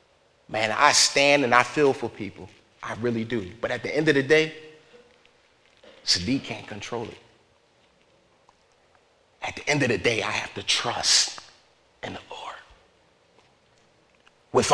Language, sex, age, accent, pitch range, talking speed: English, male, 40-59, American, 125-185 Hz, 145 wpm